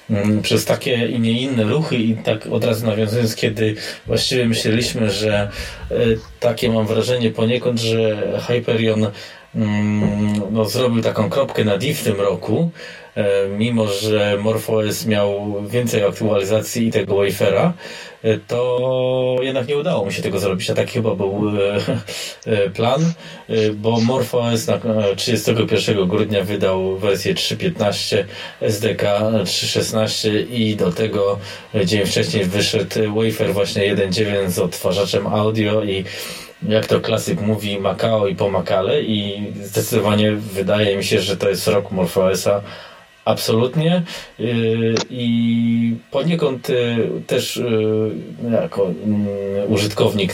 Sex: male